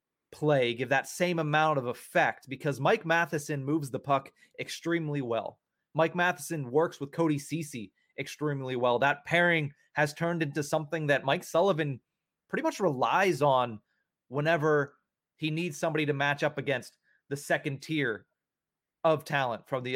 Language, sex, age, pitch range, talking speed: English, male, 30-49, 130-160 Hz, 155 wpm